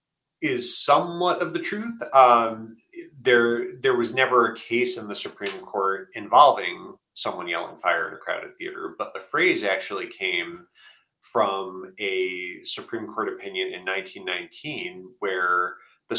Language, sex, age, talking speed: English, male, 30-49, 140 wpm